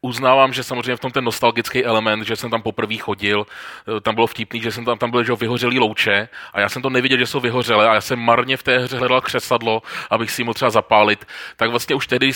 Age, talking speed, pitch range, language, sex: 30-49, 245 wpm, 110-135 Hz, Czech, male